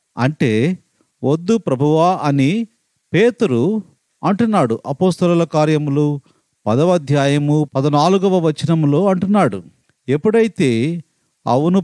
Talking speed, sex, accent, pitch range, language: 70 wpm, male, native, 140-190 Hz, Telugu